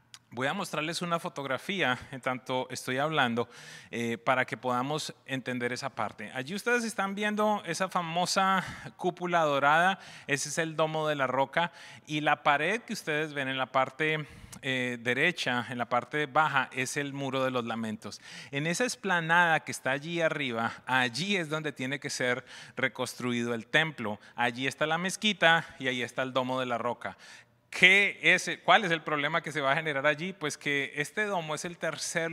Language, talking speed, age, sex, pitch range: English, 185 wpm, 30-49, male, 125-160 Hz